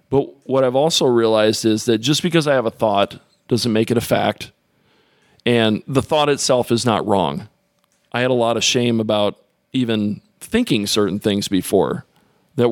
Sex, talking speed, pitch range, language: male, 180 wpm, 110-130 Hz, English